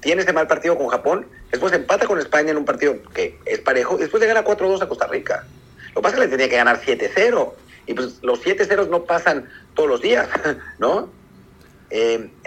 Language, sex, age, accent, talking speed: Spanish, male, 50-69, Mexican, 220 wpm